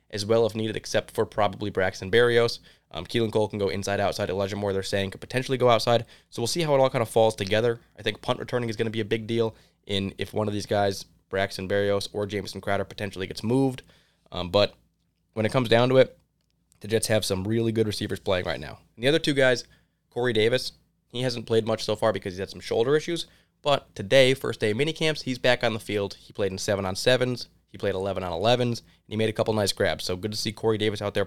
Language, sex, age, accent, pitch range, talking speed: English, male, 20-39, American, 100-120 Hz, 250 wpm